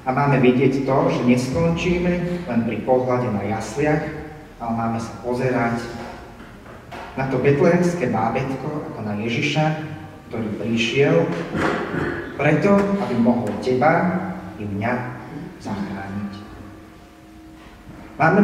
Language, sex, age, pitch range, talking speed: Slovak, male, 30-49, 105-145 Hz, 105 wpm